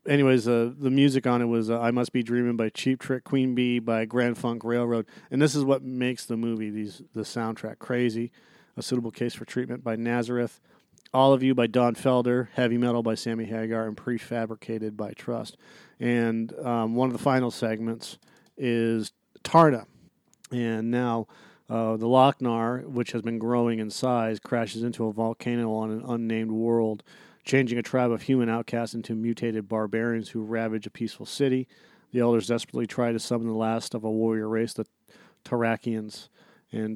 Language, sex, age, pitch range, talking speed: English, male, 40-59, 110-125 Hz, 180 wpm